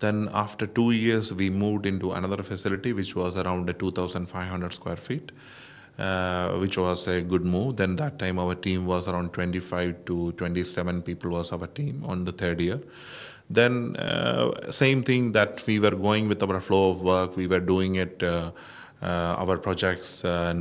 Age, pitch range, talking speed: 20-39, 90-95 Hz, 175 wpm